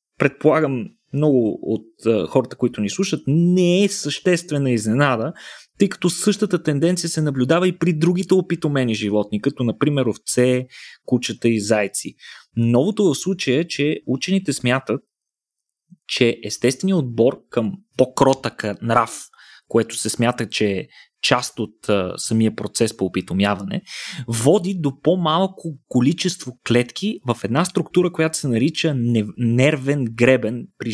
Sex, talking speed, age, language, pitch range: male, 130 wpm, 20-39, Bulgarian, 120-165 Hz